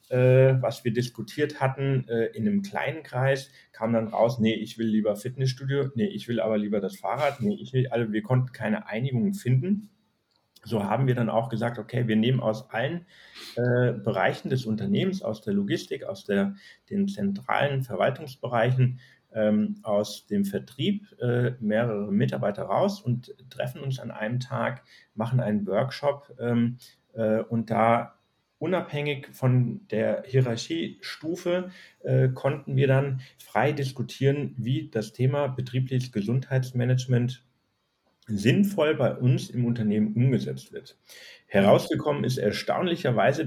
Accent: German